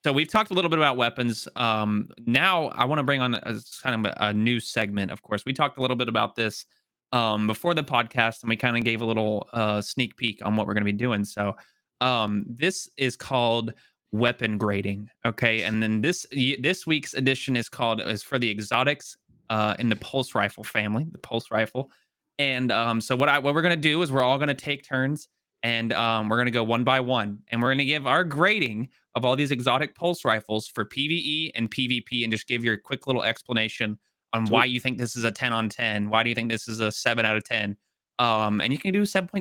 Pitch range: 115-145 Hz